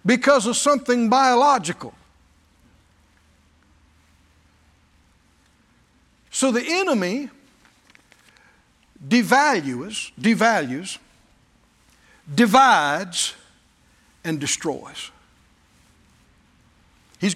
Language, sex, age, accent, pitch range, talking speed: English, male, 60-79, American, 175-280 Hz, 45 wpm